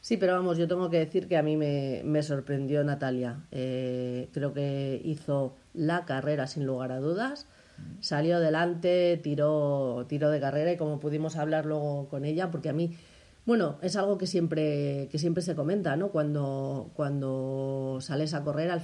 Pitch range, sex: 140-170 Hz, female